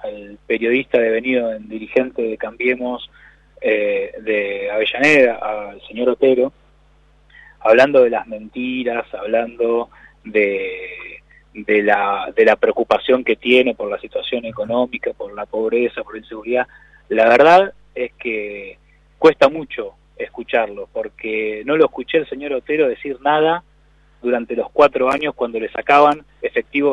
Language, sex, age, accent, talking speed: Spanish, male, 20-39, Argentinian, 135 wpm